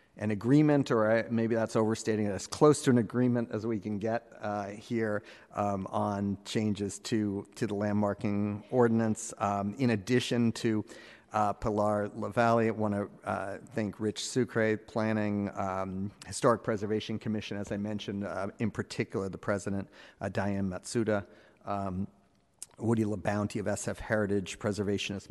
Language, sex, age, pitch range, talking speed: English, male, 40-59, 100-115 Hz, 150 wpm